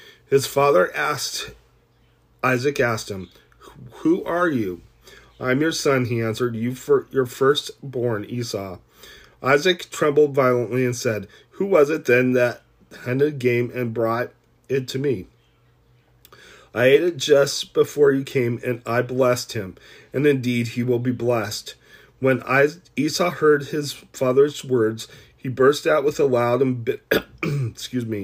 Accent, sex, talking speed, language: American, male, 140 wpm, English